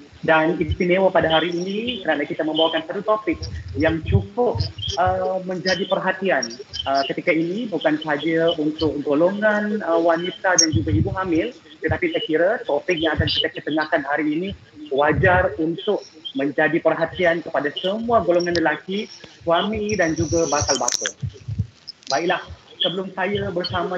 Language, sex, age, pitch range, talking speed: Malay, male, 30-49, 160-185 Hz, 135 wpm